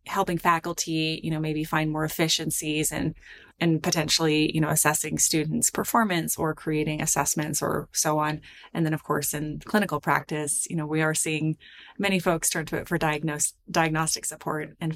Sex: female